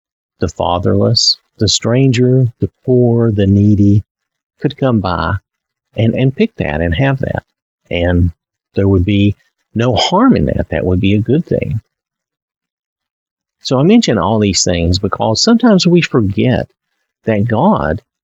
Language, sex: English, male